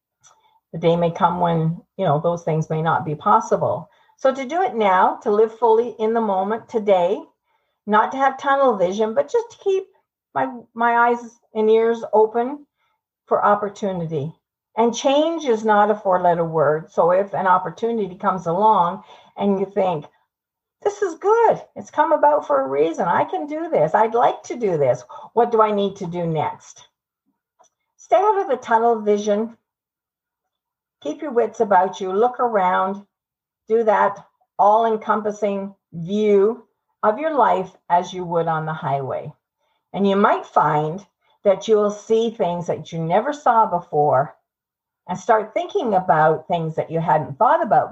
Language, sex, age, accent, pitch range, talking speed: English, female, 50-69, American, 175-240 Hz, 165 wpm